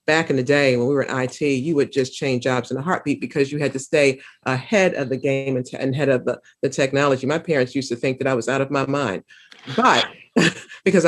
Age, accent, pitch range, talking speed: 40-59, American, 135-170 Hz, 250 wpm